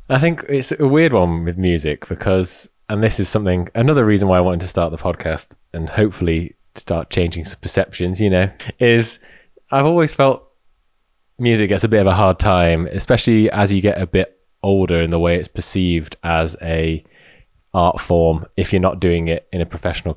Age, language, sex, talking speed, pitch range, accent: 20-39, English, male, 195 wpm, 85-105 Hz, British